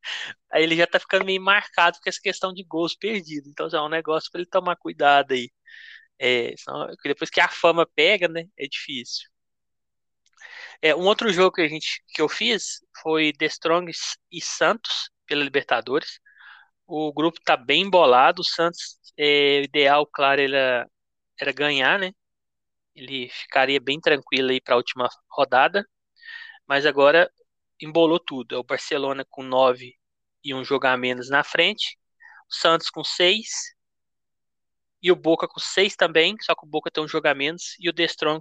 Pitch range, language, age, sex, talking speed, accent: 140-185 Hz, Portuguese, 20-39, male, 175 wpm, Brazilian